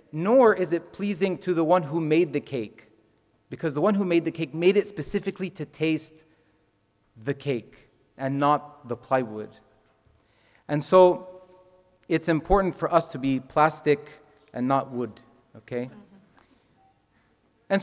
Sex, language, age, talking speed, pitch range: male, English, 30-49, 145 wpm, 130-180 Hz